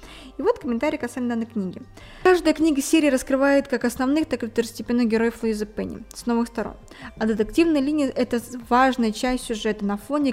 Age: 20-39